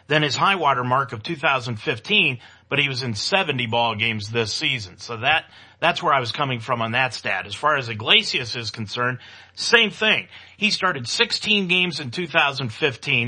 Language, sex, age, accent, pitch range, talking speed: English, male, 40-59, American, 120-170 Hz, 185 wpm